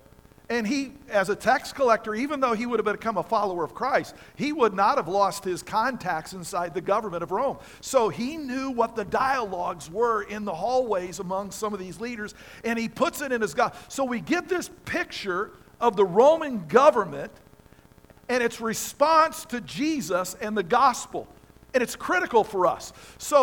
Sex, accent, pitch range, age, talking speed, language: male, American, 185-255 Hz, 50-69, 185 wpm, English